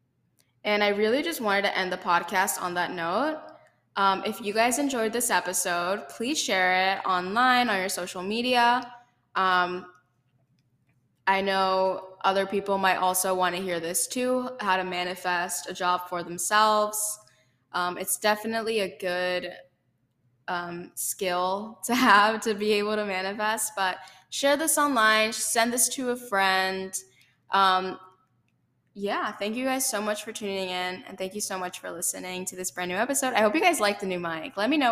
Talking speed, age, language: 170 wpm, 10-29, English